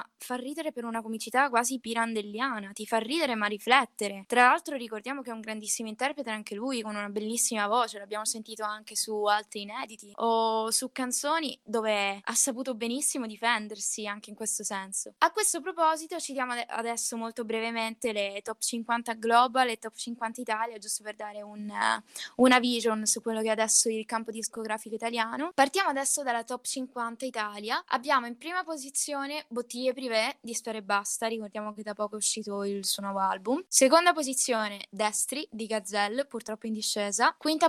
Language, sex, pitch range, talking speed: Italian, female, 215-260 Hz, 180 wpm